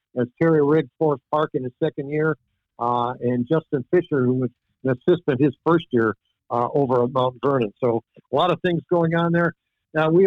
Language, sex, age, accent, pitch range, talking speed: English, male, 60-79, American, 130-165 Hz, 205 wpm